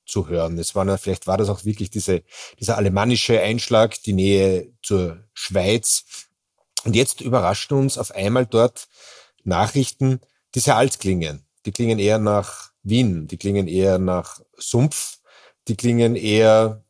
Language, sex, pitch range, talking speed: German, male, 95-115 Hz, 150 wpm